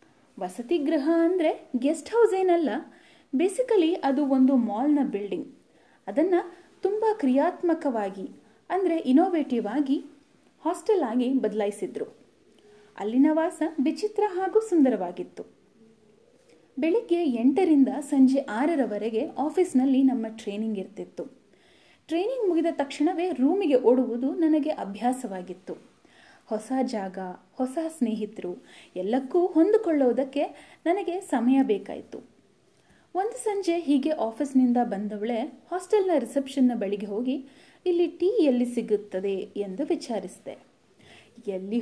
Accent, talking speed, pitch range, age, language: native, 95 wpm, 235-335 Hz, 10-29, Kannada